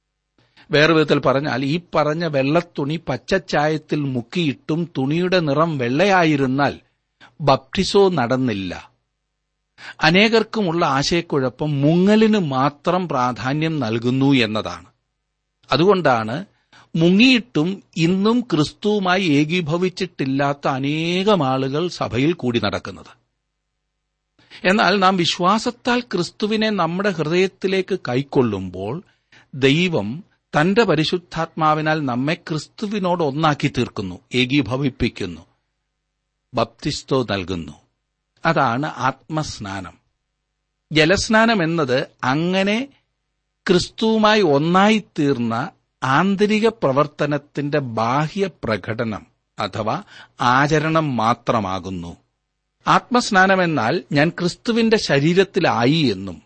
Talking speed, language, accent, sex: 75 wpm, Malayalam, native, male